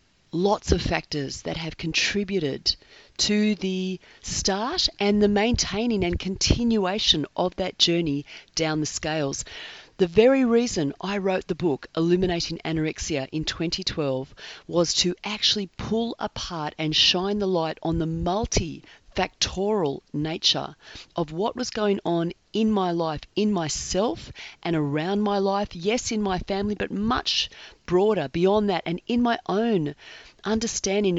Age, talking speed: 40-59, 140 wpm